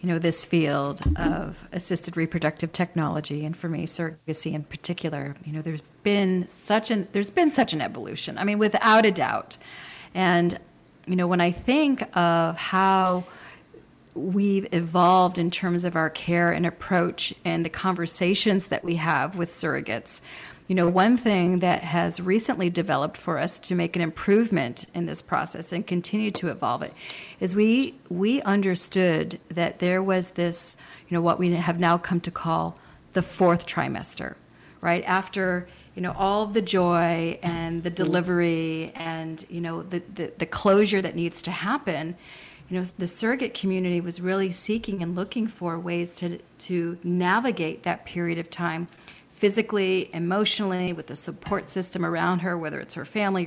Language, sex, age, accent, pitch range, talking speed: English, female, 40-59, American, 170-195 Hz, 170 wpm